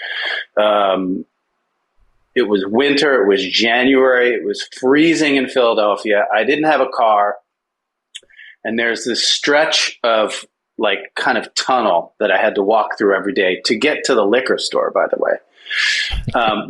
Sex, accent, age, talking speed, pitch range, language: male, American, 30-49, 160 wpm, 115-165 Hz, English